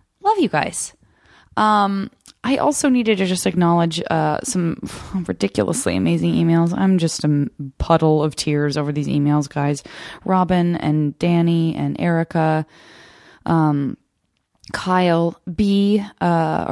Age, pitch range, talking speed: 20-39, 150-195 Hz, 120 wpm